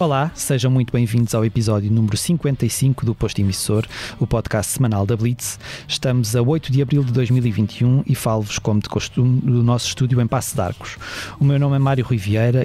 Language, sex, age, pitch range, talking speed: Portuguese, male, 20-39, 110-130 Hz, 200 wpm